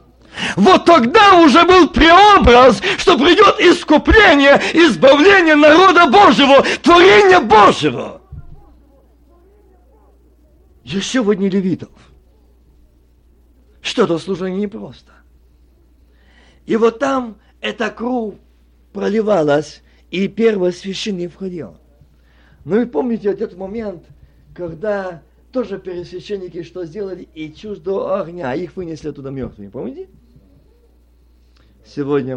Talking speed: 95 wpm